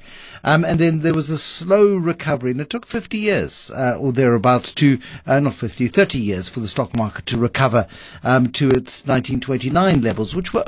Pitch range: 120-170 Hz